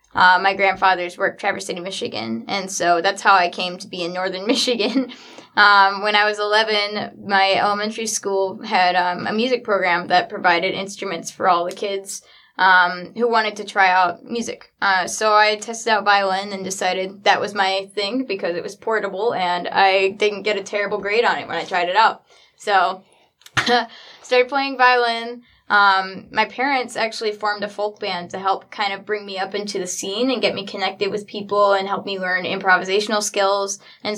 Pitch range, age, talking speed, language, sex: 190-220 Hz, 10-29, 195 wpm, English, female